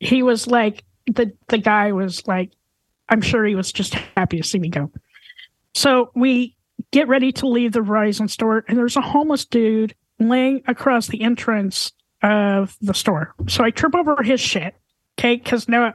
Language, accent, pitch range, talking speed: English, American, 215-255 Hz, 180 wpm